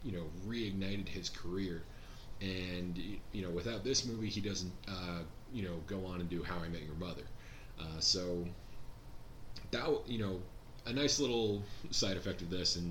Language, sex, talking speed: English, male, 175 wpm